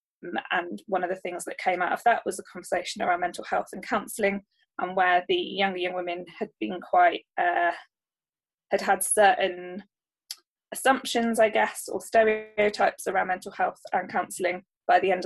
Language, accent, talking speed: English, British, 175 wpm